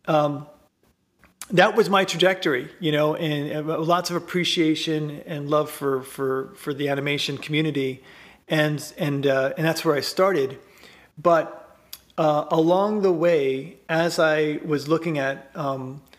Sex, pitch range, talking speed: male, 140-165 Hz, 145 wpm